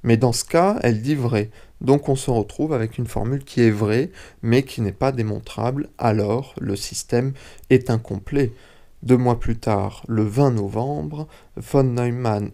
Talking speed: 170 wpm